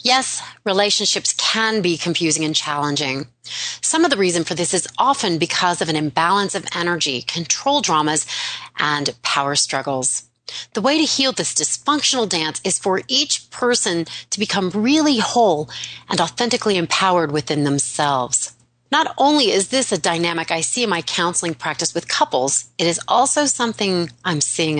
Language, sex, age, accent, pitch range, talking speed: English, female, 30-49, American, 150-210 Hz, 160 wpm